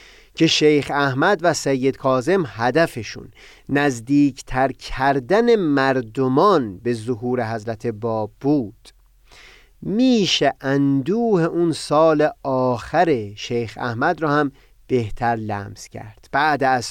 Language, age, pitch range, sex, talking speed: Persian, 40-59, 120-165 Hz, male, 105 wpm